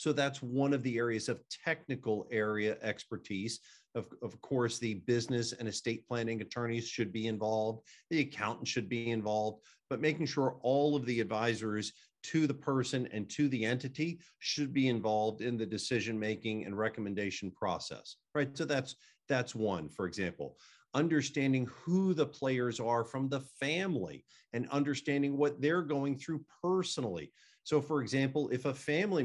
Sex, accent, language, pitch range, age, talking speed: male, American, English, 115-155 Hz, 50-69, 160 wpm